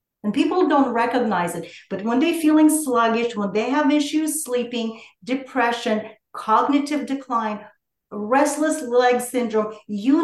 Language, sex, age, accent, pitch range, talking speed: English, female, 40-59, American, 205-270 Hz, 130 wpm